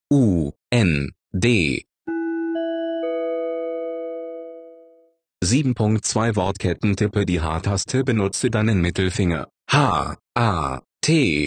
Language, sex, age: German, male, 30-49